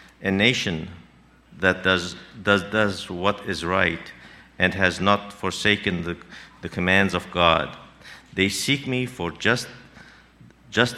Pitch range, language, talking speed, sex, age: 90-100 Hz, English, 130 wpm, male, 50-69